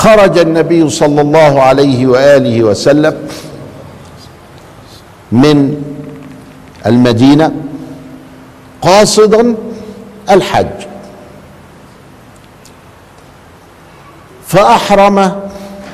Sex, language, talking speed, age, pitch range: male, Arabic, 45 wpm, 50-69, 125-170 Hz